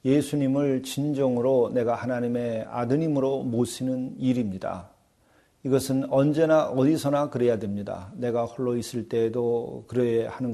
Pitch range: 115-135 Hz